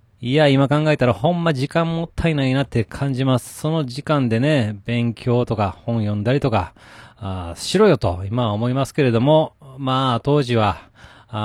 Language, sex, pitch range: Japanese, male, 105-135 Hz